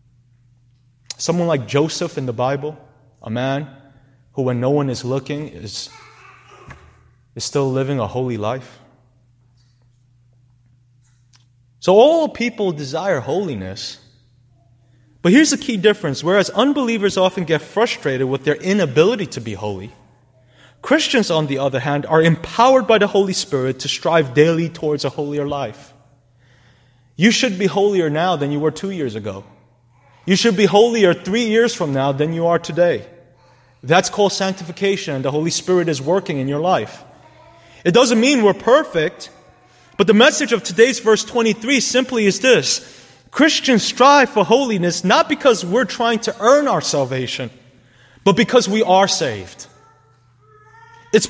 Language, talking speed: English, 150 wpm